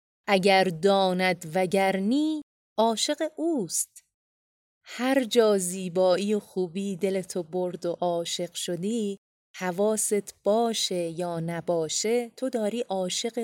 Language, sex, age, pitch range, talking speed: Persian, female, 30-49, 175-225 Hz, 105 wpm